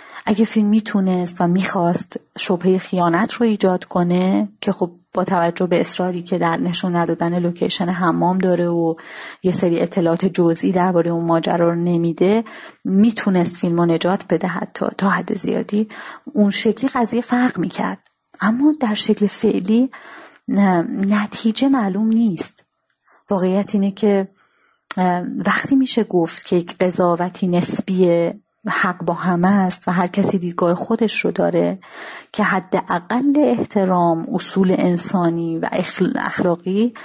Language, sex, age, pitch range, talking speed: Persian, female, 30-49, 175-210 Hz, 130 wpm